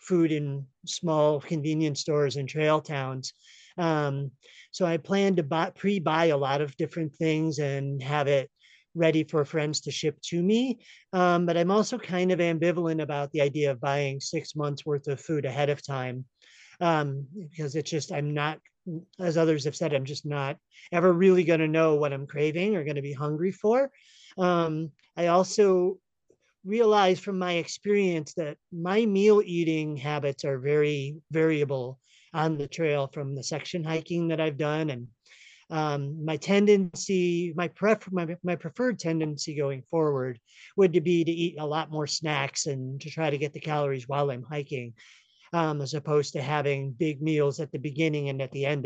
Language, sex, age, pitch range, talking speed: English, male, 40-59, 145-175 Hz, 175 wpm